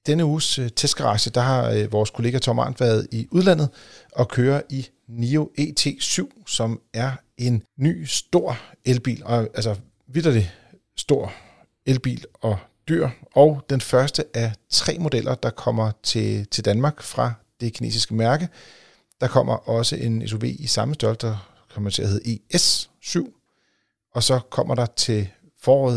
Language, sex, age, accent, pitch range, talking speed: Danish, male, 40-59, native, 110-140 Hz, 145 wpm